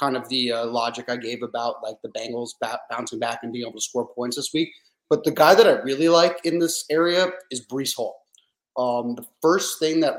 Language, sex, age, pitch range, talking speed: English, male, 30-49, 125-150 Hz, 235 wpm